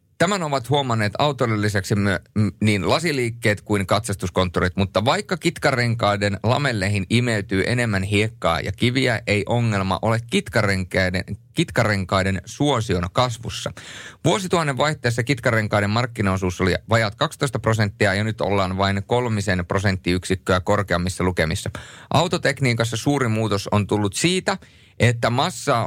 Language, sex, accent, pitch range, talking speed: Finnish, male, native, 95-120 Hz, 110 wpm